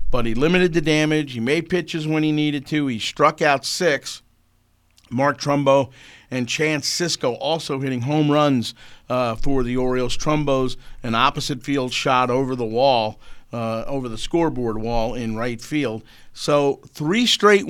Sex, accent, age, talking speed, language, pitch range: male, American, 50-69, 165 wpm, English, 120-150 Hz